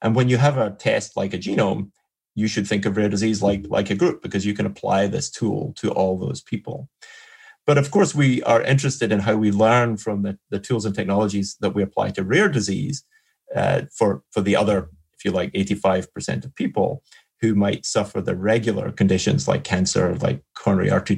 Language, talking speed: English, 205 wpm